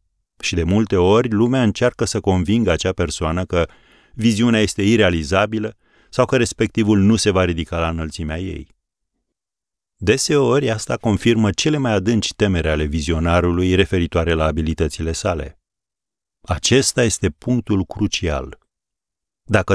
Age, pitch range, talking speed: 30-49, 80-105 Hz, 130 wpm